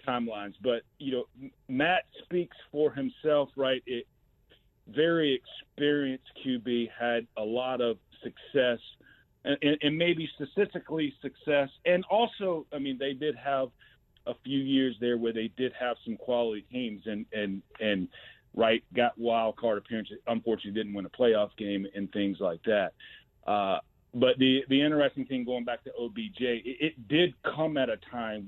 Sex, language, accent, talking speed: male, English, American, 160 wpm